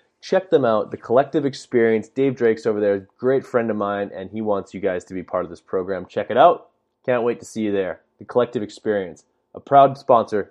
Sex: male